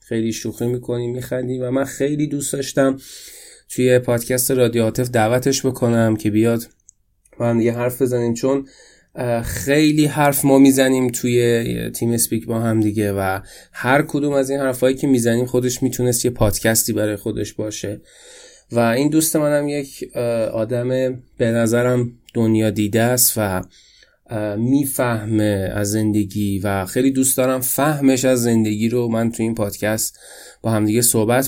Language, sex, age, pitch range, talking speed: Persian, male, 20-39, 110-135 Hz, 150 wpm